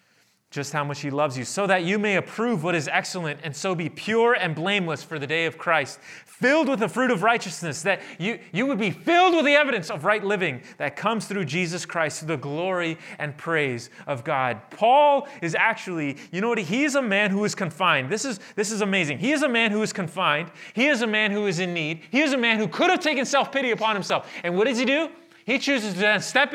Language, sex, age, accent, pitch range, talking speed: English, male, 30-49, American, 165-240 Hz, 245 wpm